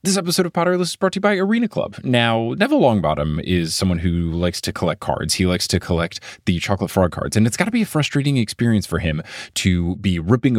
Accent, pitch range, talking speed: American, 90-125 Hz, 245 wpm